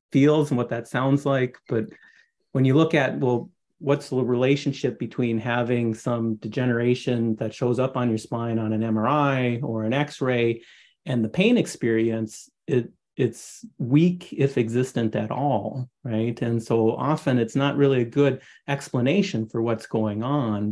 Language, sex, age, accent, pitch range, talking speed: English, male, 30-49, American, 115-140 Hz, 160 wpm